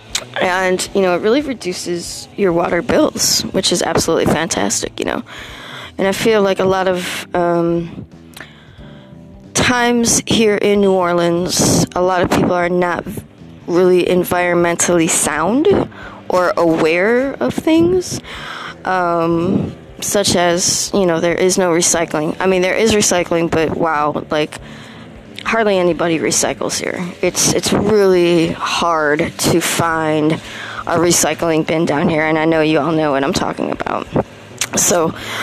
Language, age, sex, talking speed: English, 20-39, female, 140 wpm